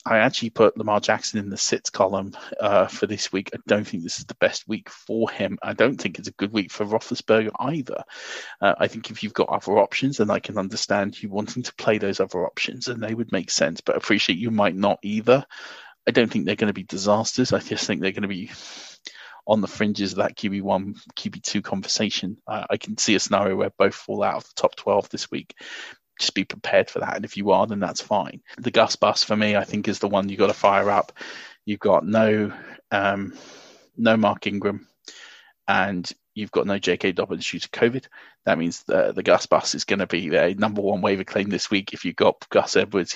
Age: 30-49